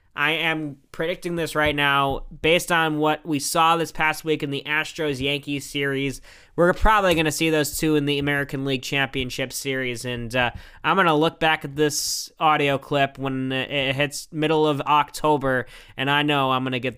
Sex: male